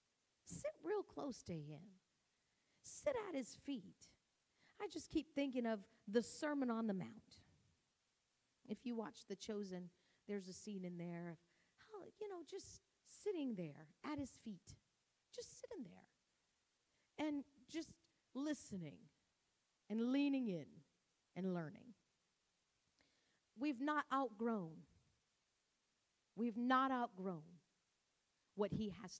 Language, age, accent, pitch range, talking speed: English, 40-59, American, 195-295 Hz, 115 wpm